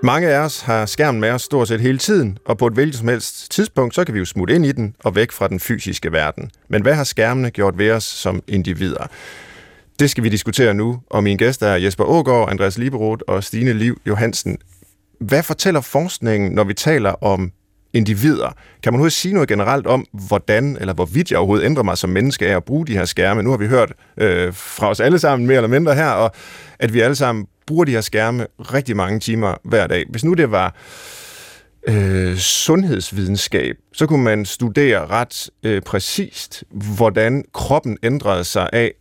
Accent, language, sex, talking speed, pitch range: native, Danish, male, 205 wpm, 100-140 Hz